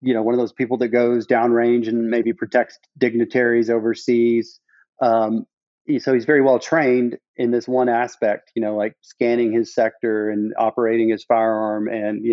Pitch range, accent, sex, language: 110-125 Hz, American, male, English